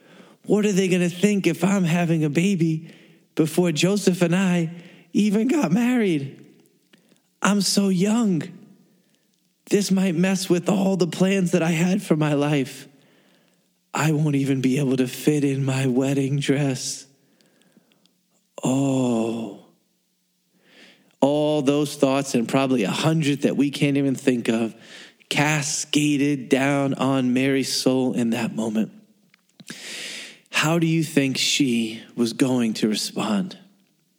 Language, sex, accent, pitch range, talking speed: English, male, American, 135-190 Hz, 135 wpm